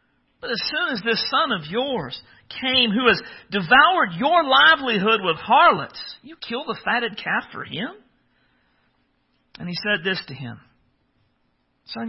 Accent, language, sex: American, English, male